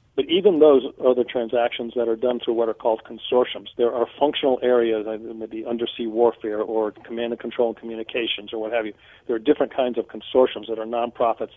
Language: English